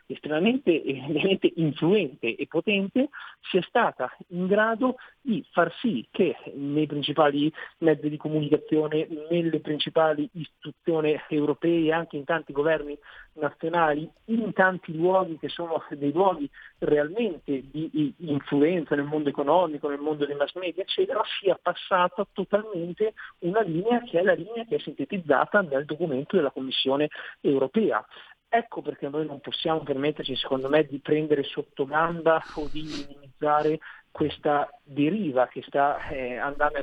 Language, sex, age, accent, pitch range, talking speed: Italian, male, 50-69, native, 145-175 Hz, 135 wpm